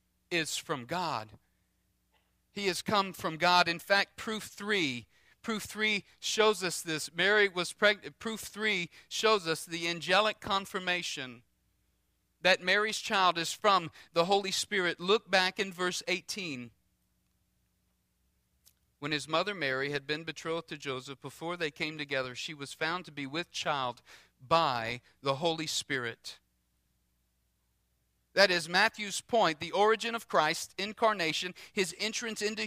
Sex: male